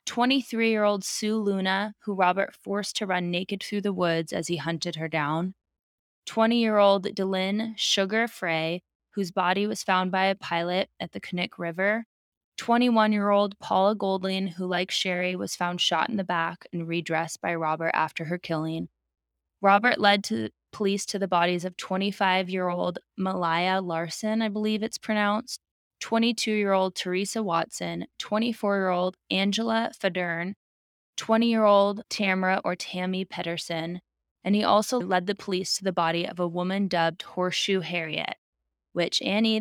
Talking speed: 140 wpm